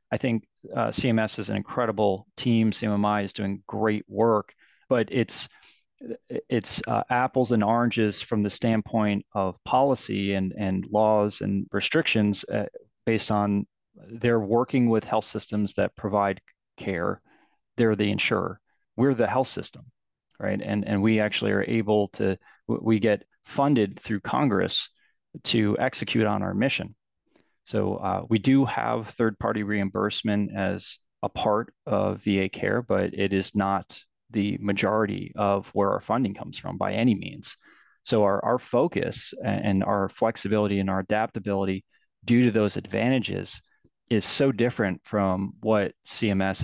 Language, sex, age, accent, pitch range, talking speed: English, male, 30-49, American, 100-115 Hz, 145 wpm